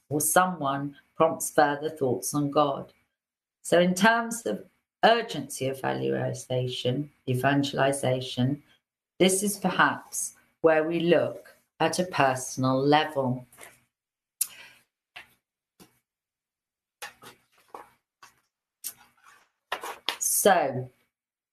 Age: 50-69